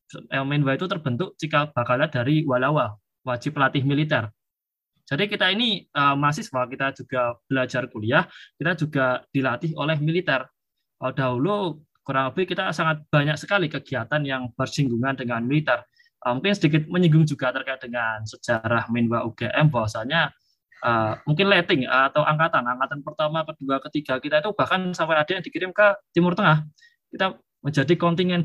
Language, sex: Indonesian, male